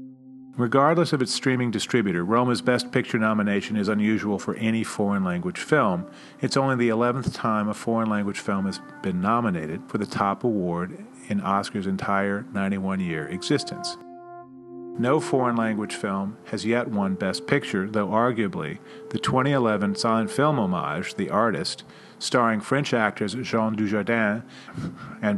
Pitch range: 105-135 Hz